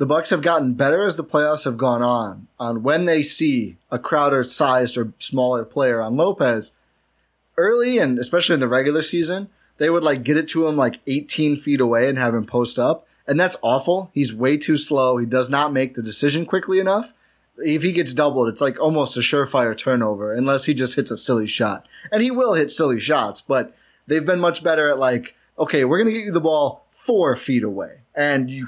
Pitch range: 125-155 Hz